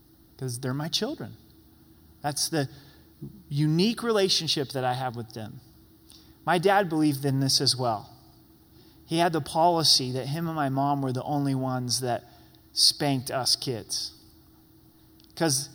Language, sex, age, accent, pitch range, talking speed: English, male, 30-49, American, 130-160 Hz, 145 wpm